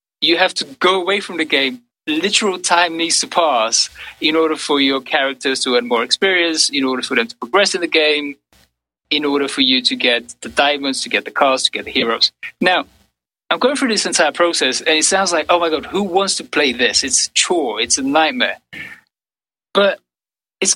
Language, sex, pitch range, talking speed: English, male, 140-195 Hz, 215 wpm